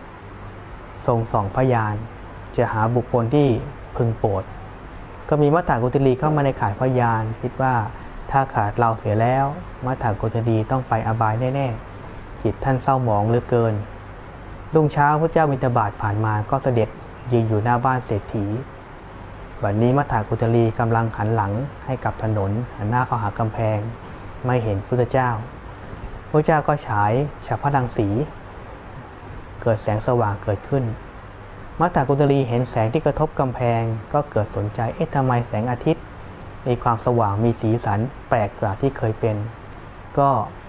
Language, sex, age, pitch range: Thai, male, 20-39, 105-130 Hz